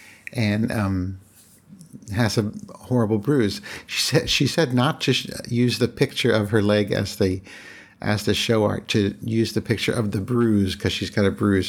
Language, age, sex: English, 50-69, male